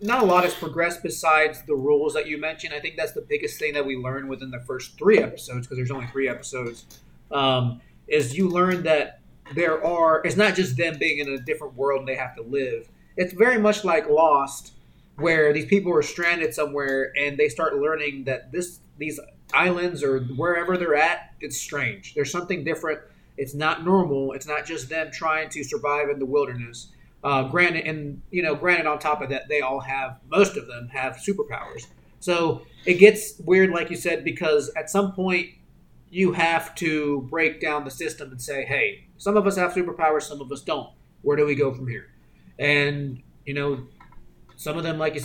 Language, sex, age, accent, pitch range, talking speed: English, male, 30-49, American, 140-175 Hz, 205 wpm